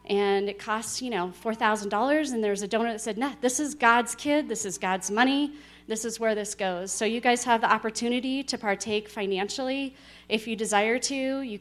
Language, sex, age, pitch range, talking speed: English, female, 30-49, 195-230 Hz, 205 wpm